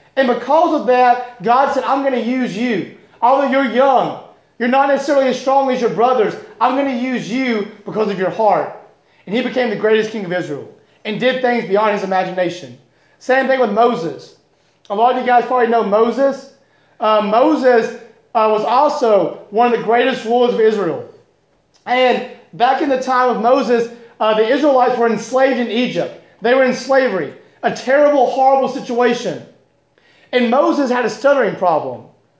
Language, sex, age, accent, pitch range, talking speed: English, male, 30-49, American, 220-270 Hz, 180 wpm